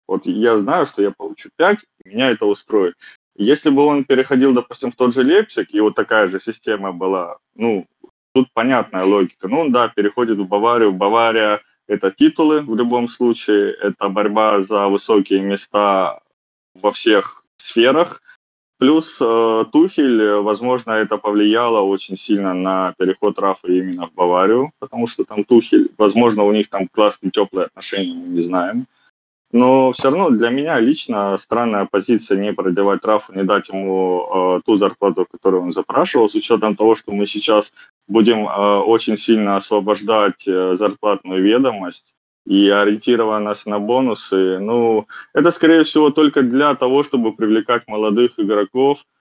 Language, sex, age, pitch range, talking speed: Russian, male, 20-39, 100-130 Hz, 150 wpm